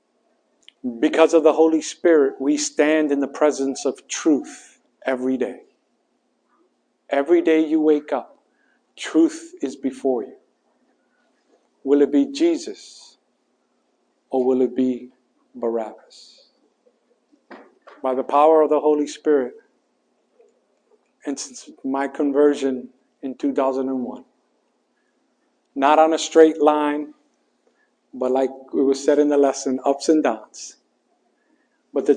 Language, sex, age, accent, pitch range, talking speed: English, male, 50-69, American, 135-170 Hz, 120 wpm